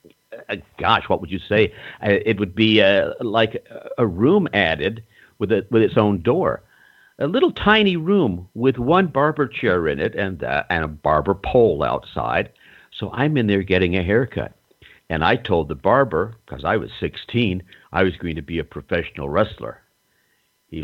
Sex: male